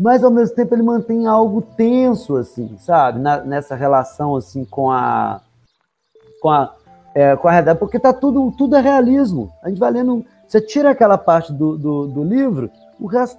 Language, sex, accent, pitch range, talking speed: Portuguese, male, Brazilian, 135-215 Hz, 190 wpm